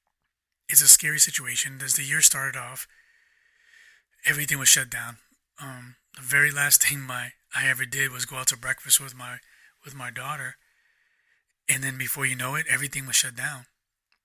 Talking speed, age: 170 wpm, 20-39